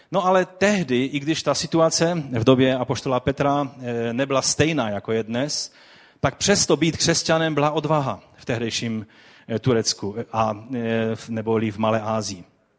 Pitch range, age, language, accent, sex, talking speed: 115-160 Hz, 40-59, Czech, native, male, 140 wpm